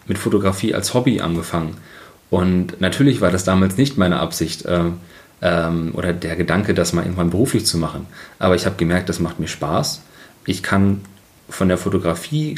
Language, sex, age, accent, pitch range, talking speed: German, male, 30-49, German, 90-110 Hz, 175 wpm